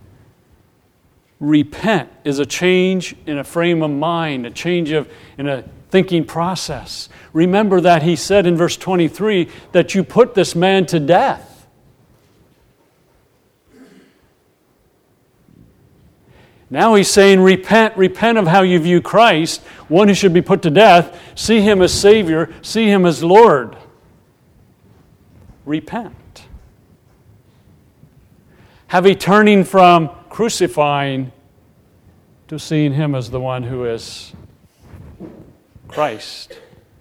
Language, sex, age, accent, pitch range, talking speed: English, male, 50-69, American, 130-180 Hz, 115 wpm